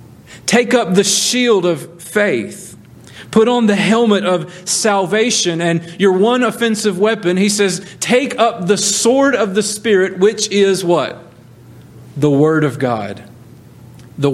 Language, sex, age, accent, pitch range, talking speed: English, male, 40-59, American, 135-200 Hz, 140 wpm